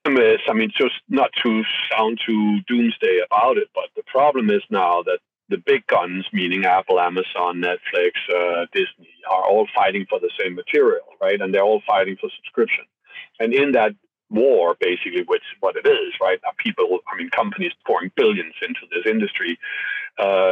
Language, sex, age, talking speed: English, male, 50-69, 180 wpm